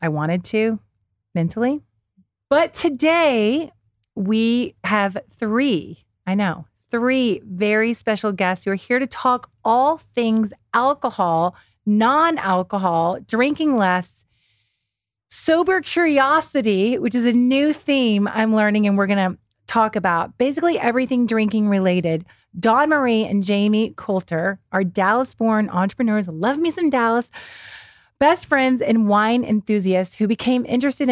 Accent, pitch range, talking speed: American, 185-250 Hz, 125 wpm